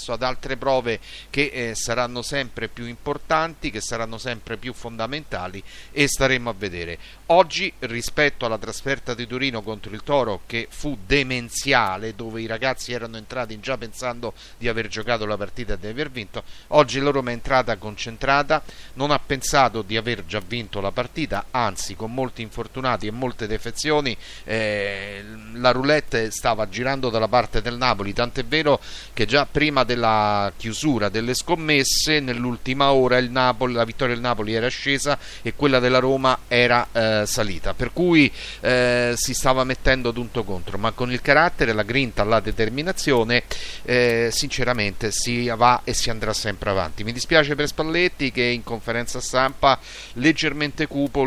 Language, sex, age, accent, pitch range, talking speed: Italian, male, 40-59, native, 110-135 Hz, 160 wpm